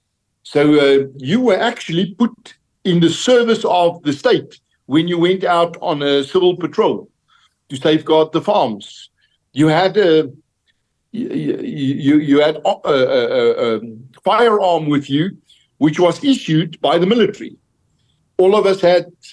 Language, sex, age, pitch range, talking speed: English, male, 60-79, 150-220 Hz, 135 wpm